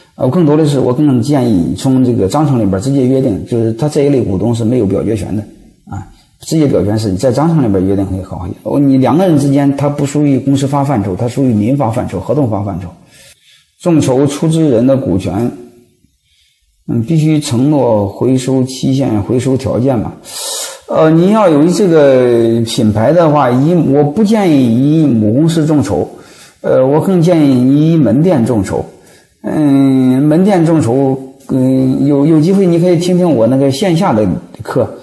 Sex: male